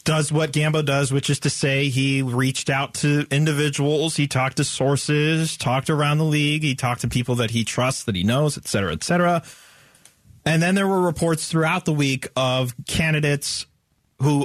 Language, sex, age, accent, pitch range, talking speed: English, male, 30-49, American, 125-160 Hz, 190 wpm